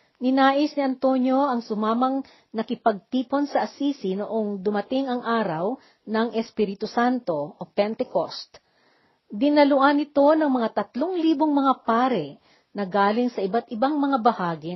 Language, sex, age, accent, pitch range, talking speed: Filipino, female, 50-69, native, 210-270 Hz, 130 wpm